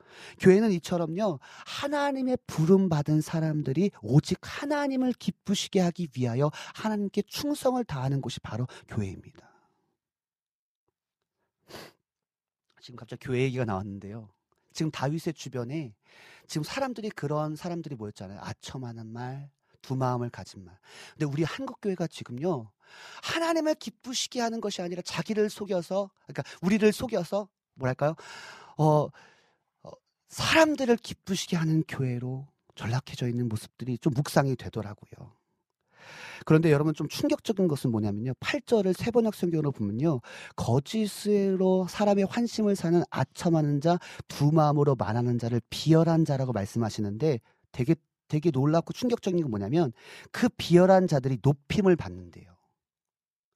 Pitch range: 125-190 Hz